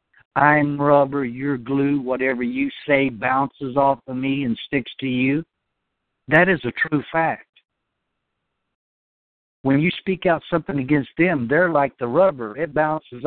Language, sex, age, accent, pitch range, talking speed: English, male, 60-79, American, 130-160 Hz, 150 wpm